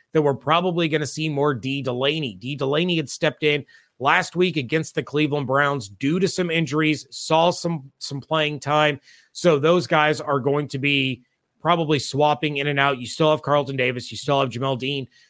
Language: English